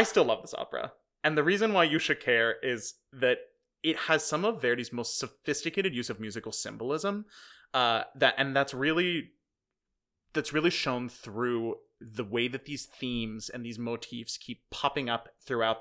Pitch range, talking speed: 115-155 Hz, 175 wpm